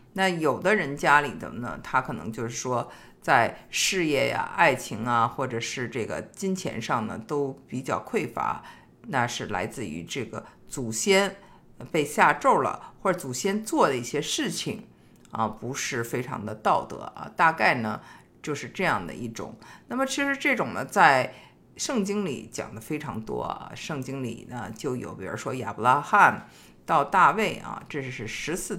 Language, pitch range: Chinese, 125-185 Hz